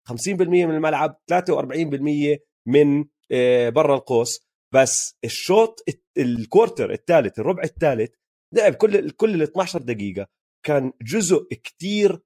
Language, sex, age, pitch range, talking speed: Arabic, male, 30-49, 140-205 Hz, 110 wpm